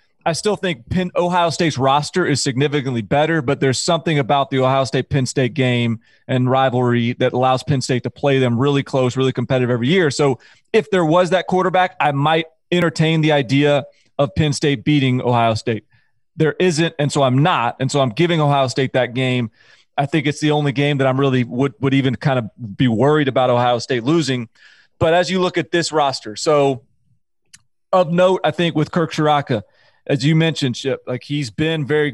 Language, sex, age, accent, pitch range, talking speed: English, male, 30-49, American, 125-150 Hz, 200 wpm